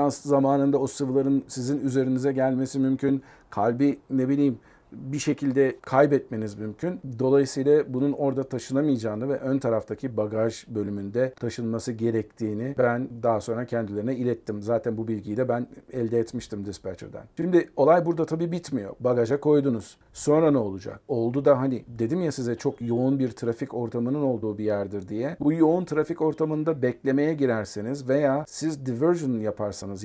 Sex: male